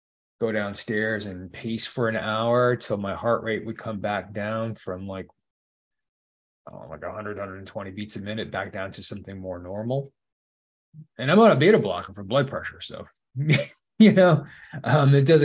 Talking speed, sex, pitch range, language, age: 175 wpm, male, 95-120 Hz, English, 20-39